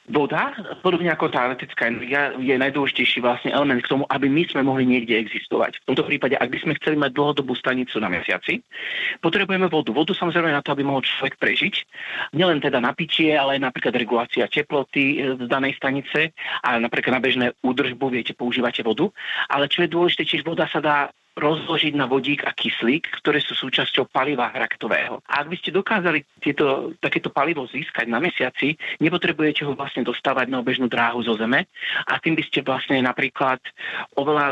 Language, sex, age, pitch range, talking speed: Slovak, male, 40-59, 125-150 Hz, 180 wpm